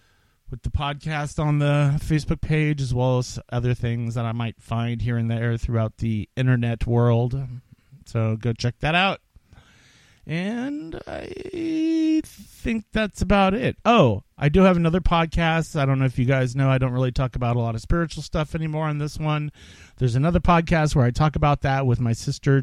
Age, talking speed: 40-59, 190 wpm